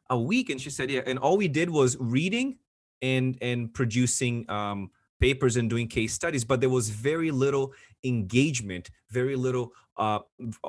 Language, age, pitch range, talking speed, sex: English, 30-49, 105-130 Hz, 165 wpm, male